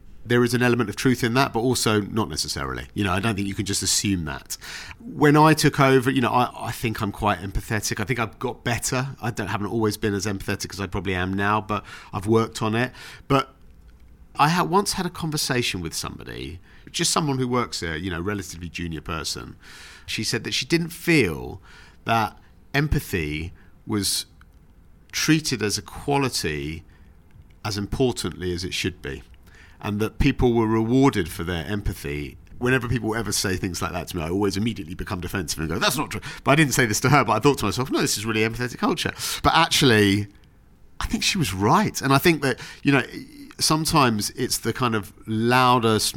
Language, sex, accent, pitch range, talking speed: English, male, British, 95-125 Hz, 205 wpm